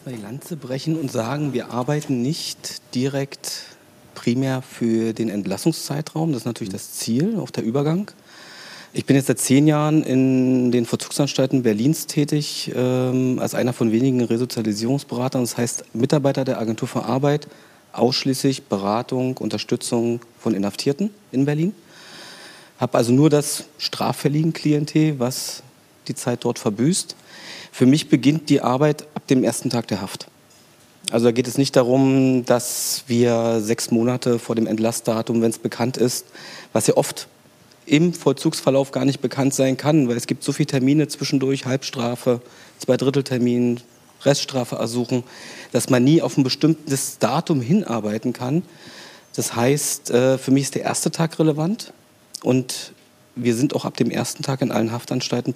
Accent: German